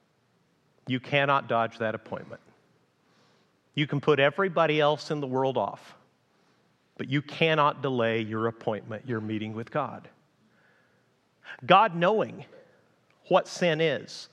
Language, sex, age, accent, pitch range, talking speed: English, male, 40-59, American, 155-215 Hz, 120 wpm